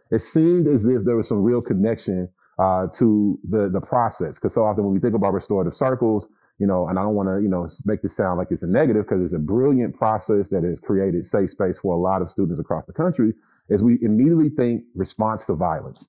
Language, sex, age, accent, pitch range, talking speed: English, male, 30-49, American, 95-115 Hz, 240 wpm